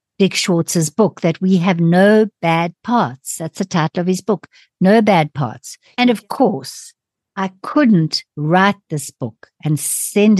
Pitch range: 160-230 Hz